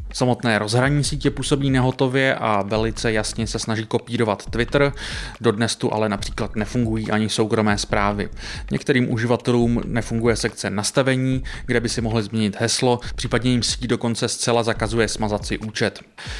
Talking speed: 150 wpm